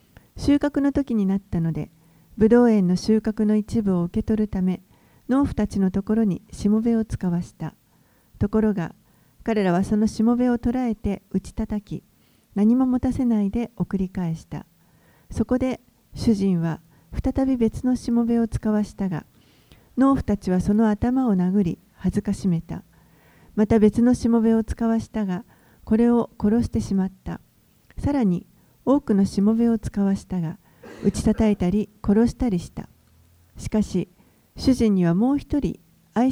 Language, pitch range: Japanese, 180-235 Hz